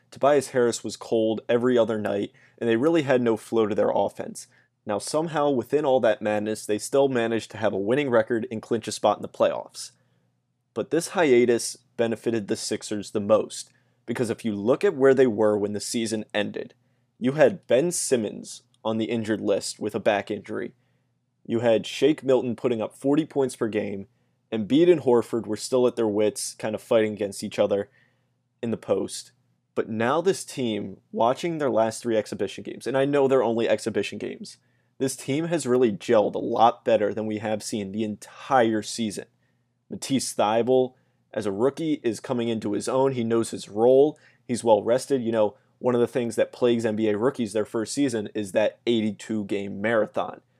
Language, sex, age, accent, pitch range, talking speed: English, male, 20-39, American, 105-125 Hz, 190 wpm